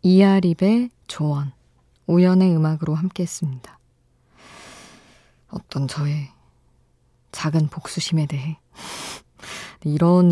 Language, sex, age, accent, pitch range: Korean, female, 20-39, native, 145-170 Hz